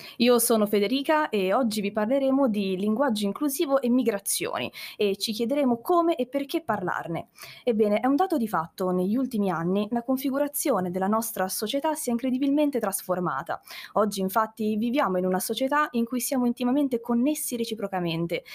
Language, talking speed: Italian, 160 wpm